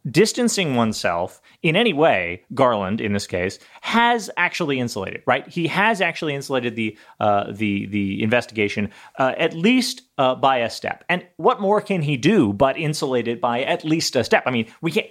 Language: English